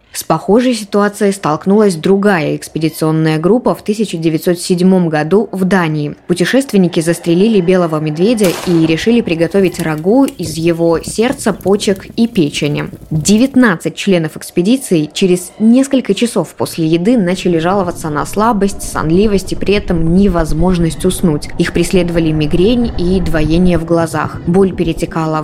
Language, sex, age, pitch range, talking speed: Russian, female, 20-39, 165-200 Hz, 125 wpm